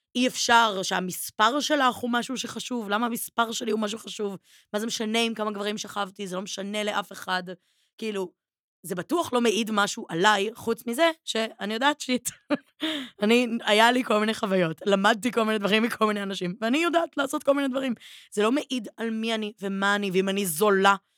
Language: Hebrew